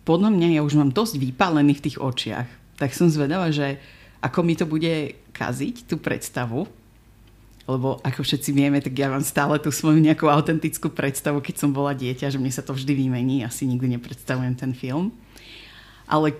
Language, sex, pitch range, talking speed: Slovak, female, 130-165 Hz, 185 wpm